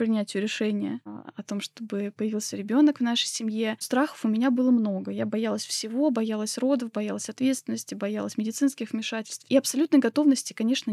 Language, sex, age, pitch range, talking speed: Russian, female, 20-39, 210-255 Hz, 160 wpm